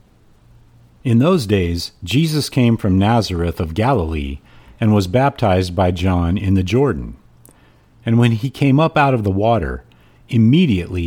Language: English